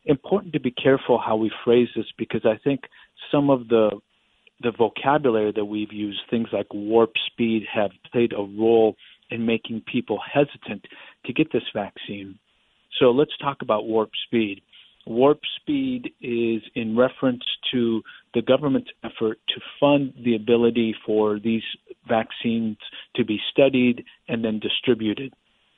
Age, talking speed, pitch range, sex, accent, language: 50-69, 145 wpm, 110-135 Hz, male, American, English